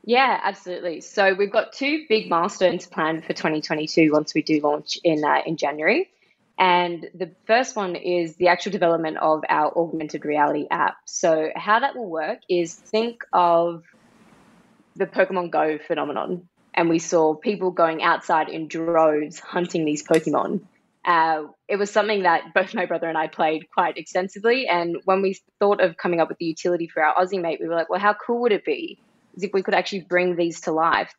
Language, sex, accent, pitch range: English, female, Australian, 160-190 Hz